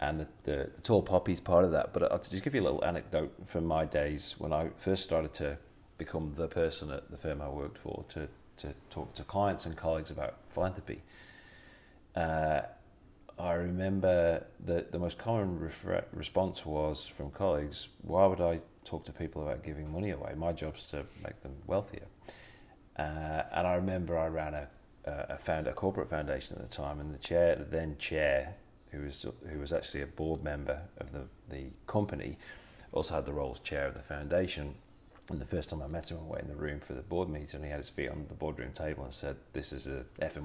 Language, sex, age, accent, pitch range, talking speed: English, male, 30-49, British, 75-90 Hz, 215 wpm